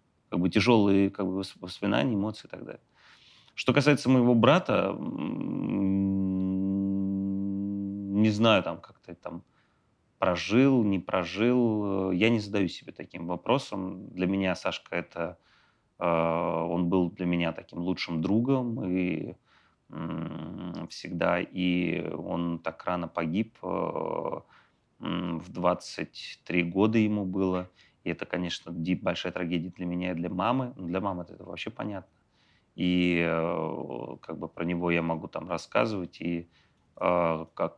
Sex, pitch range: male, 85-100 Hz